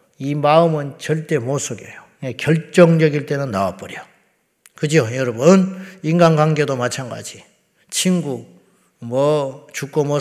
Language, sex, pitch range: Korean, male, 125-160 Hz